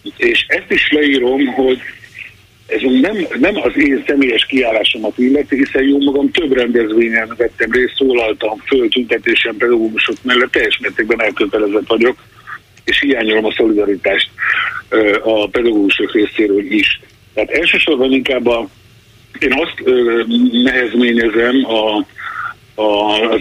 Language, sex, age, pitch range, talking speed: Hungarian, male, 50-69, 115-160 Hz, 115 wpm